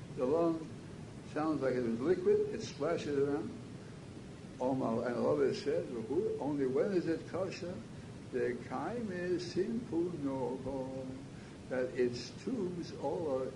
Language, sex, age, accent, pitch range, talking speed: English, male, 60-79, American, 125-165 Hz, 120 wpm